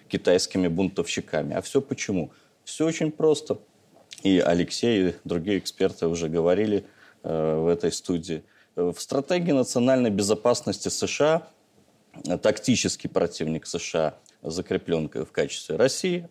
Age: 30-49